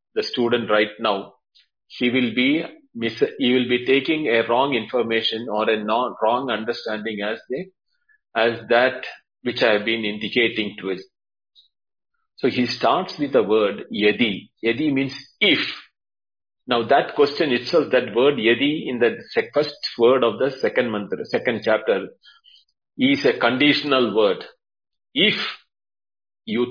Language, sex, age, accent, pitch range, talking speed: English, male, 40-59, Indian, 105-140 Hz, 145 wpm